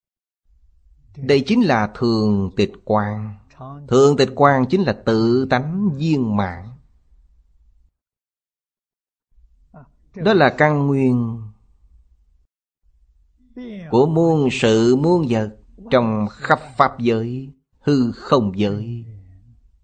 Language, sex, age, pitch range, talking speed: Vietnamese, male, 30-49, 80-130 Hz, 95 wpm